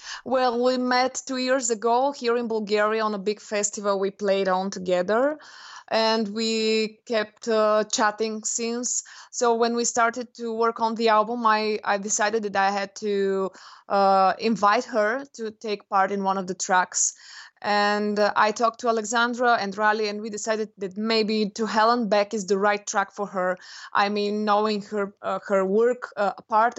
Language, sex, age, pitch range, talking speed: English, female, 20-39, 200-230 Hz, 180 wpm